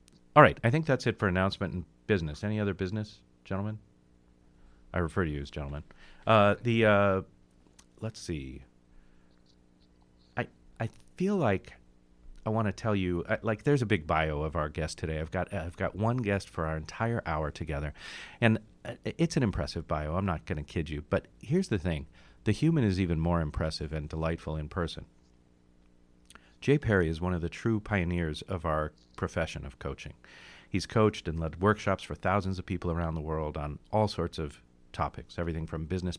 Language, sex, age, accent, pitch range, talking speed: English, male, 40-59, American, 75-100 Hz, 185 wpm